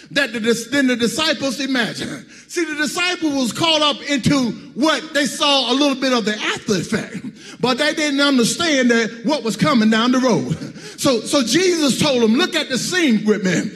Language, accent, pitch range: English, American, 245-320 Hz